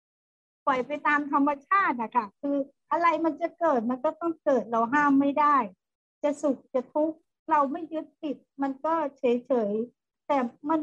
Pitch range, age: 250-300 Hz, 60-79